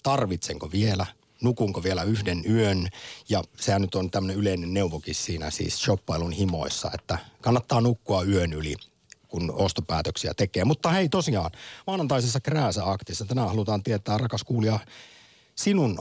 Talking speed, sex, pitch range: 135 wpm, male, 90-120 Hz